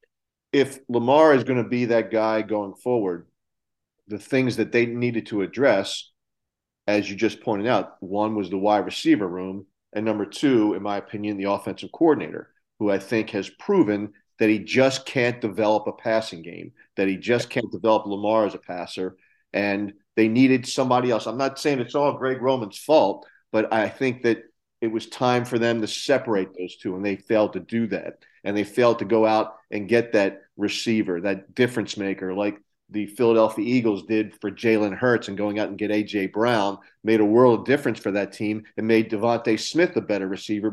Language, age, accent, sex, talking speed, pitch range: English, 50-69, American, male, 195 wpm, 105-125 Hz